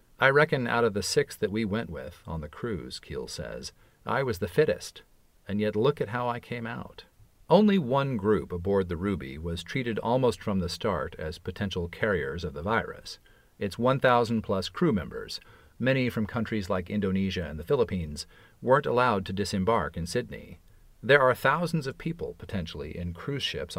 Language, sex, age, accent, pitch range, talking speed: English, male, 40-59, American, 90-120 Hz, 180 wpm